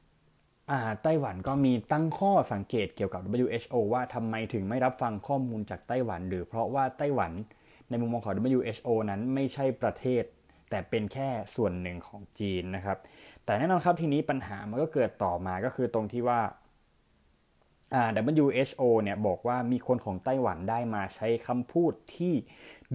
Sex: male